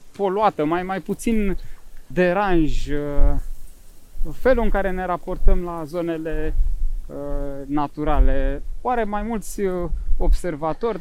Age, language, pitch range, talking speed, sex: 20-39, Romanian, 140-195 Hz, 95 wpm, male